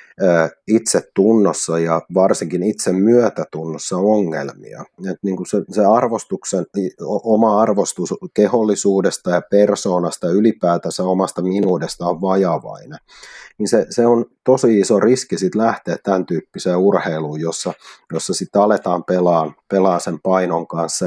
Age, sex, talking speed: 30-49, male, 120 wpm